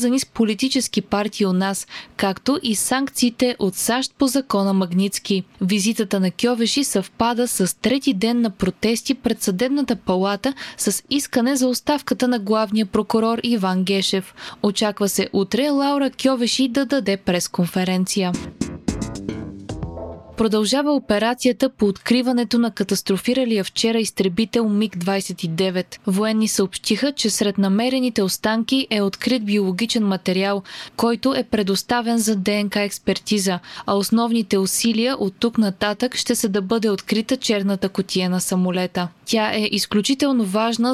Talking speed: 125 wpm